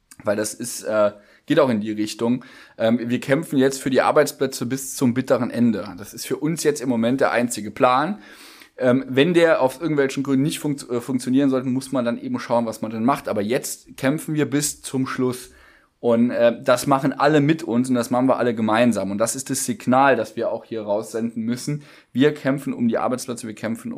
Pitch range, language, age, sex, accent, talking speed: 120-145 Hz, German, 20-39, male, German, 220 wpm